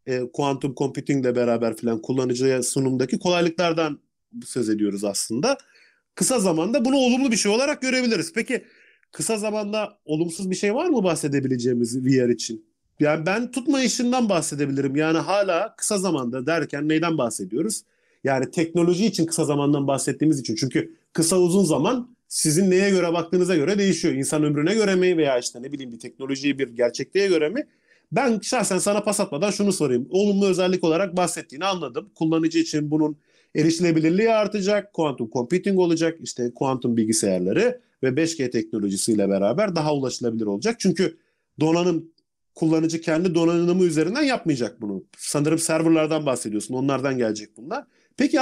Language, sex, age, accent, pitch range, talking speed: Turkish, male, 40-59, native, 135-200 Hz, 145 wpm